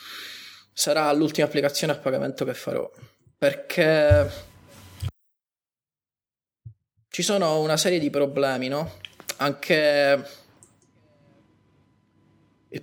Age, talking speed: 20-39, 80 wpm